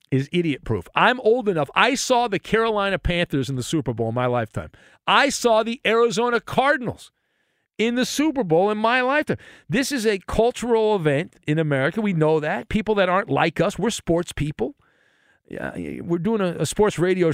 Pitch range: 140-205 Hz